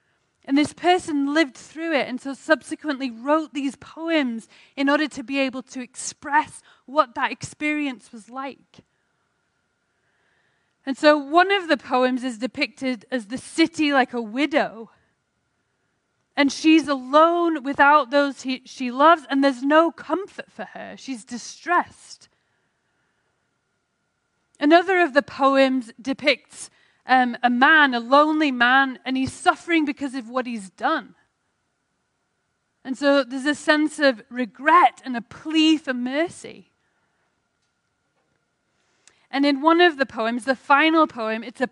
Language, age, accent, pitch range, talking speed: English, 30-49, British, 240-300 Hz, 135 wpm